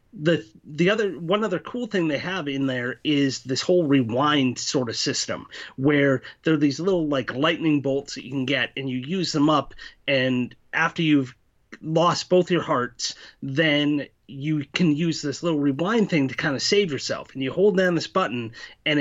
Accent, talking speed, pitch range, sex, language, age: American, 195 wpm, 140-175 Hz, male, English, 30-49